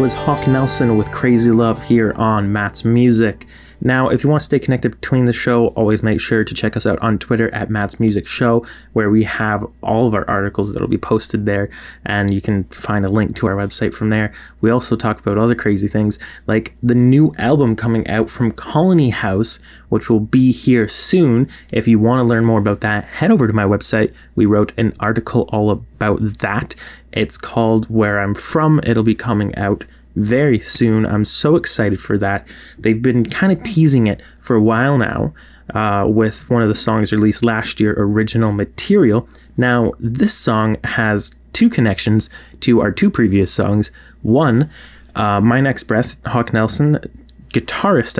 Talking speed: 190 wpm